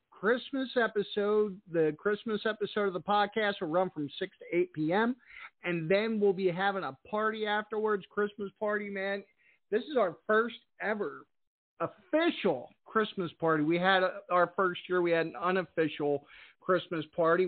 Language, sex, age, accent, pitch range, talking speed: English, male, 50-69, American, 155-205 Hz, 155 wpm